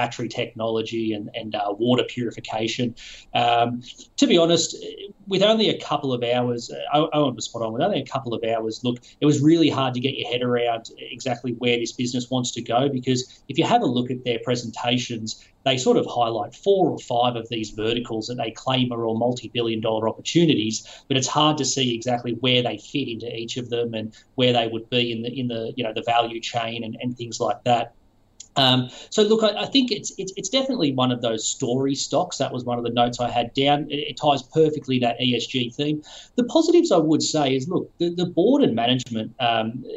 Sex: male